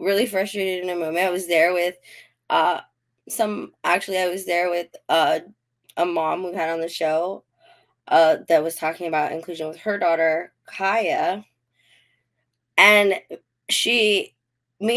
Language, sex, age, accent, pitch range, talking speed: English, female, 20-39, American, 165-220 Hz, 150 wpm